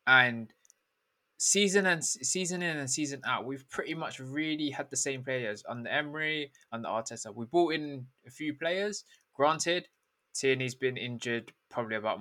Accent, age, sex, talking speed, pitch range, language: British, 20-39, male, 160 wpm, 120-150 Hz, English